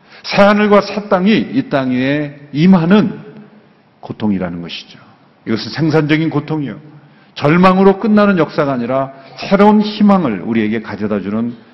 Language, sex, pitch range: Korean, male, 125-195 Hz